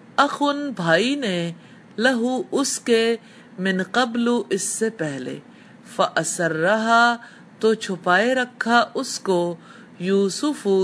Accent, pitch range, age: Indian, 185-240 Hz, 50-69